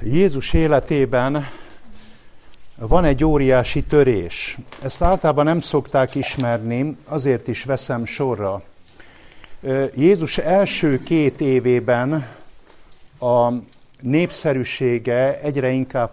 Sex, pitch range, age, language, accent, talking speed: male, 120-145 Hz, 50-69, English, Finnish, 85 wpm